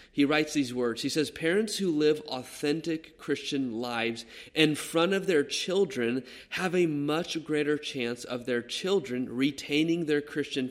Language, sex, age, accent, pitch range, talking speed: English, male, 30-49, American, 135-170 Hz, 155 wpm